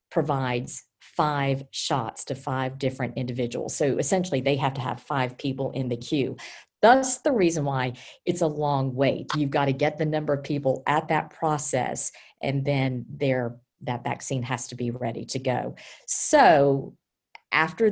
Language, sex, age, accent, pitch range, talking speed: English, female, 50-69, American, 130-175 Hz, 165 wpm